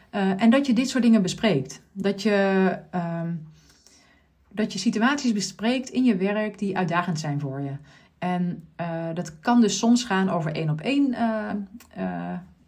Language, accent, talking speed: Dutch, Dutch, 165 wpm